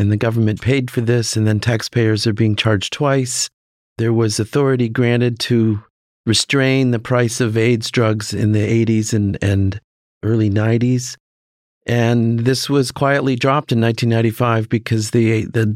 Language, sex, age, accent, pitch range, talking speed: English, male, 40-59, American, 110-125 Hz, 150 wpm